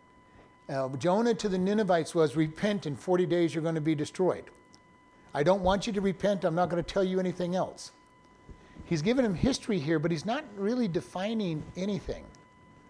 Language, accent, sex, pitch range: English, American, male, 150-195 Hz